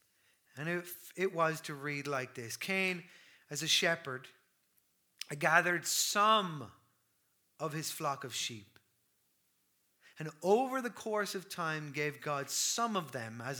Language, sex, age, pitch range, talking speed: English, male, 30-49, 155-210 Hz, 135 wpm